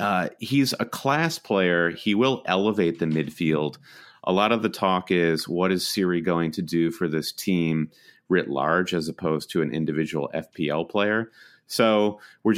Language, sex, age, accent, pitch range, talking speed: English, male, 30-49, American, 80-105 Hz, 170 wpm